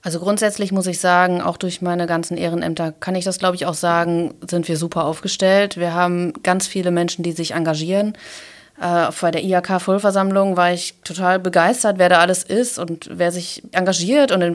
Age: 30-49